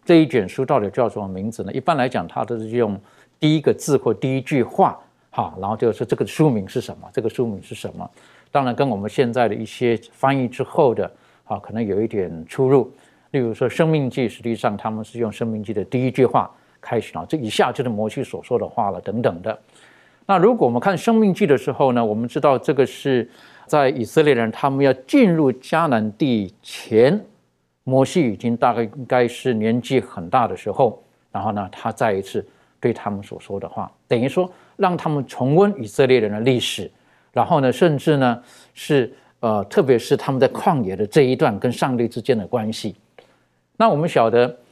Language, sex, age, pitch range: Chinese, male, 50-69, 110-140 Hz